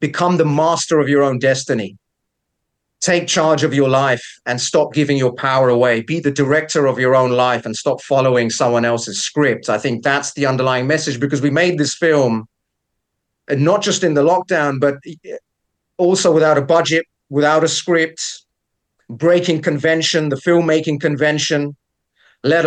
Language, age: English, 40-59